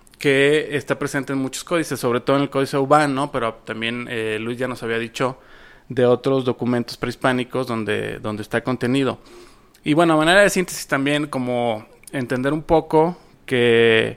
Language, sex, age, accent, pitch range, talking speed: Spanish, male, 30-49, Mexican, 125-160 Hz, 170 wpm